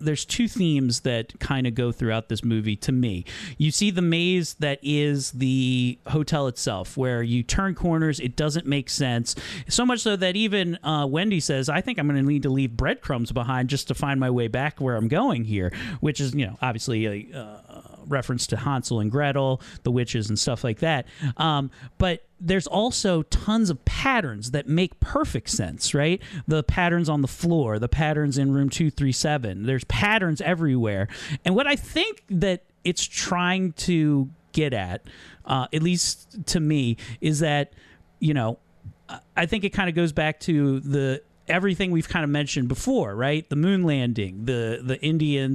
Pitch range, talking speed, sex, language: 125-160 Hz, 185 wpm, male, English